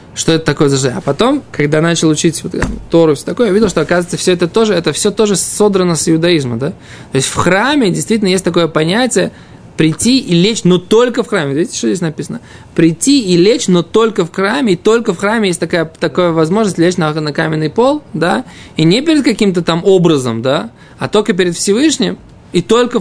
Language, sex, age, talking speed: Russian, male, 20-39, 210 wpm